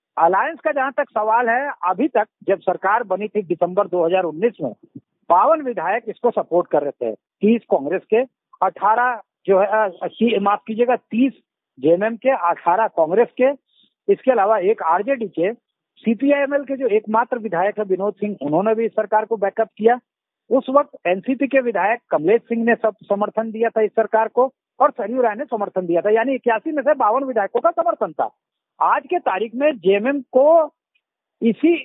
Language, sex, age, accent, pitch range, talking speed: Hindi, male, 50-69, native, 205-265 Hz, 175 wpm